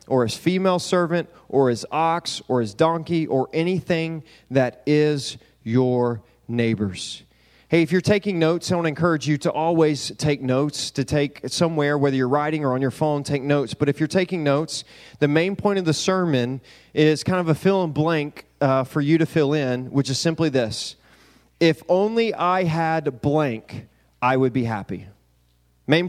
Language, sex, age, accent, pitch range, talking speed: English, male, 30-49, American, 135-175 Hz, 180 wpm